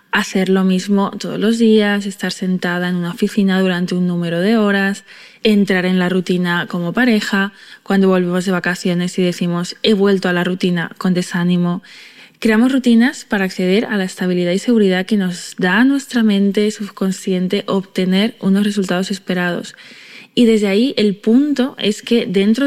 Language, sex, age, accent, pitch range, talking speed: Spanish, female, 20-39, Spanish, 185-220 Hz, 165 wpm